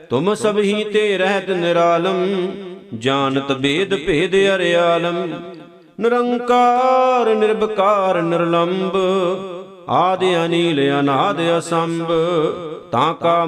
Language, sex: Punjabi, male